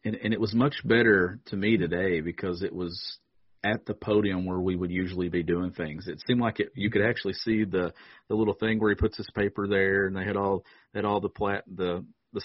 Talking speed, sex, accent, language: 240 wpm, male, American, English